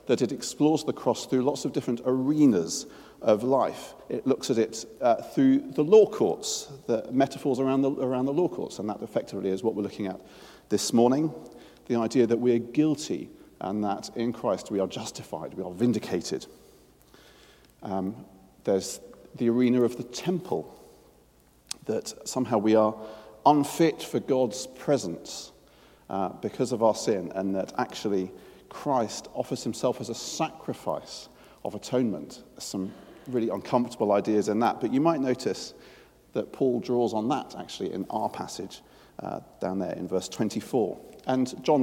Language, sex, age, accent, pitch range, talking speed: English, male, 40-59, British, 105-145 Hz, 160 wpm